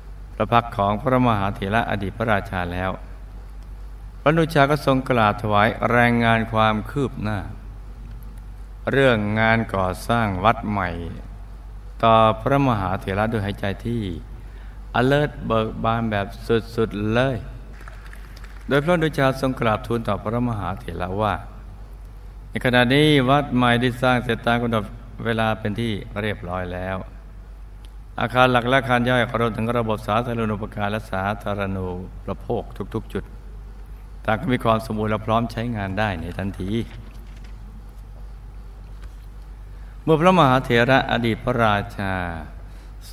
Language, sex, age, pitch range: Thai, male, 60-79, 100-115 Hz